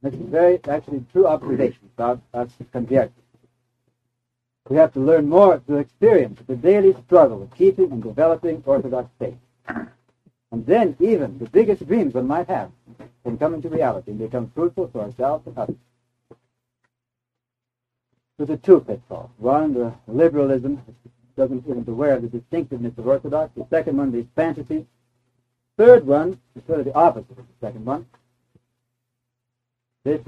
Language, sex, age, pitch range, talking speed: English, male, 60-79, 120-160 Hz, 155 wpm